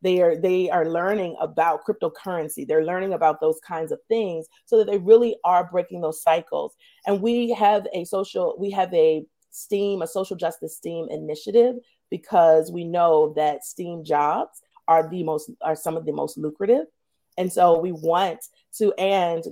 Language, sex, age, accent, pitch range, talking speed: English, female, 40-59, American, 165-235 Hz, 175 wpm